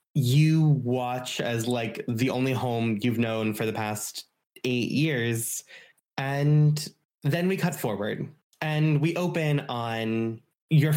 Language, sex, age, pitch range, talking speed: English, male, 20-39, 115-140 Hz, 130 wpm